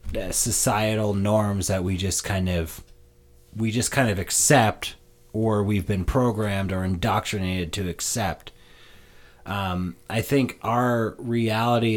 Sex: male